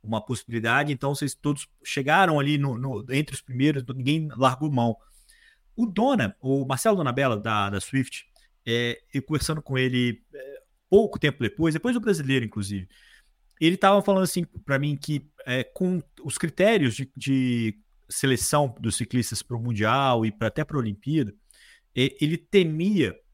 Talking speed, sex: 165 wpm, male